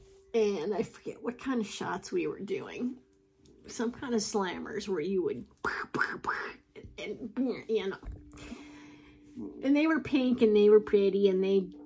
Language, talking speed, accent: English, 175 wpm, American